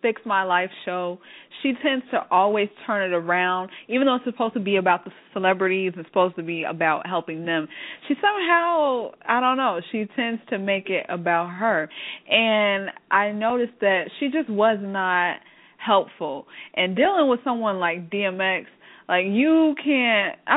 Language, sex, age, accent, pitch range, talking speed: English, female, 20-39, American, 175-230 Hz, 165 wpm